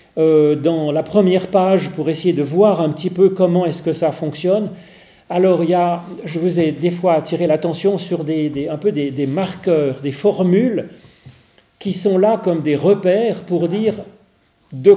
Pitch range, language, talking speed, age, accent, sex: 150-190 Hz, French, 190 wpm, 40-59, French, male